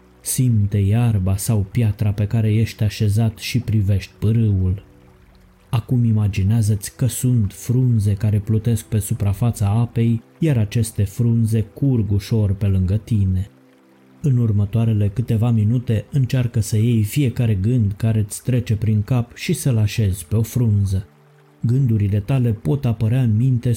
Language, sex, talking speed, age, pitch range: Romanian, male, 140 wpm, 20-39, 100-120 Hz